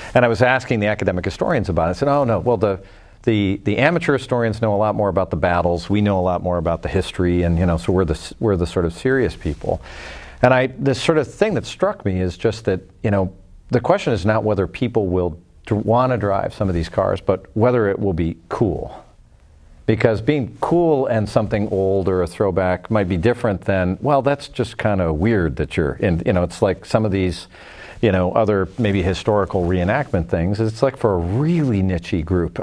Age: 50-69